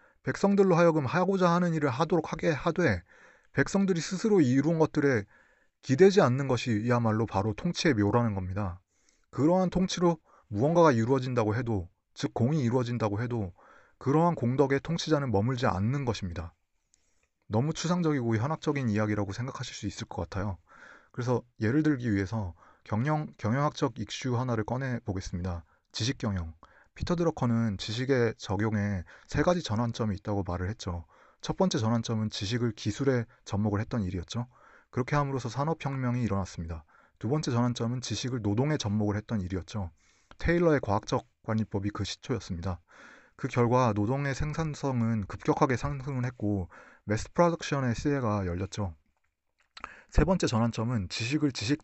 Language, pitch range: Korean, 105-145 Hz